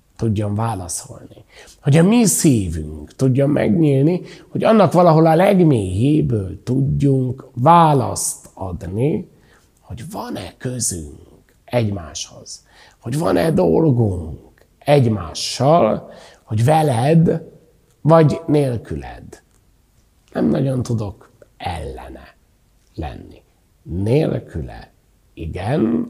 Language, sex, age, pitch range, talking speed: Hungarian, male, 60-79, 90-140 Hz, 80 wpm